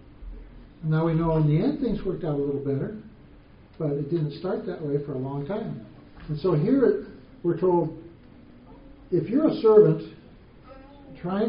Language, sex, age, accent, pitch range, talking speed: English, male, 60-79, American, 145-195 Hz, 165 wpm